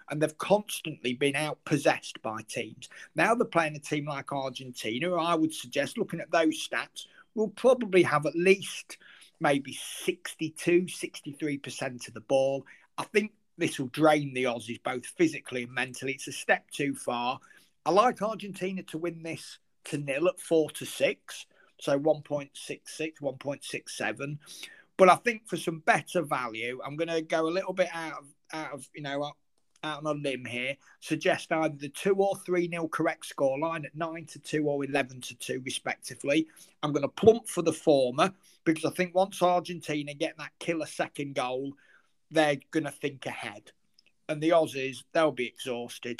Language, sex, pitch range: English, male, 140-175 Hz